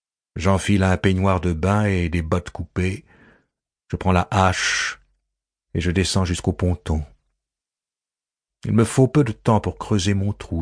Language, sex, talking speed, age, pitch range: French, male, 160 wpm, 50-69, 90-105 Hz